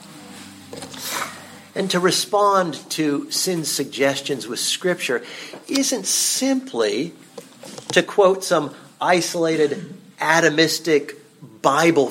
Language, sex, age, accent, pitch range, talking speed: English, male, 50-69, American, 140-185 Hz, 80 wpm